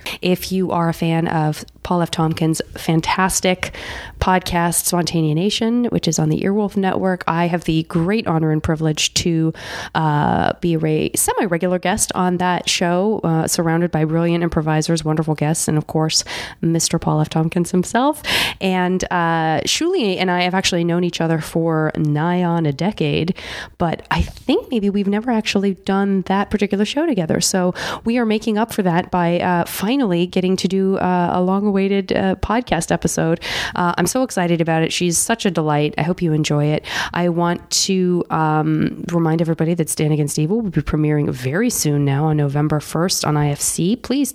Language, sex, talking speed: English, female, 180 wpm